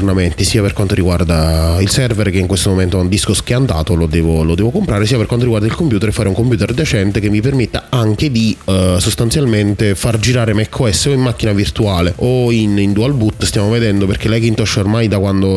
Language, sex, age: Italian, male, 20-39